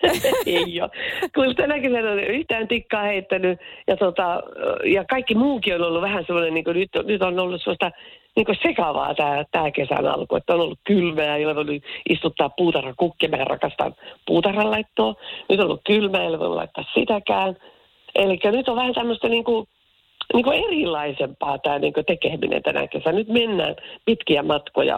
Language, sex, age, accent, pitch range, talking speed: Finnish, female, 50-69, native, 170-260 Hz, 170 wpm